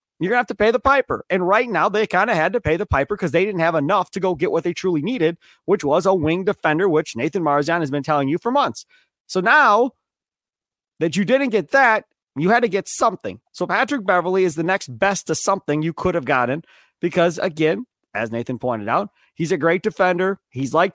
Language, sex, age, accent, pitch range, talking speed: English, male, 30-49, American, 165-260 Hz, 235 wpm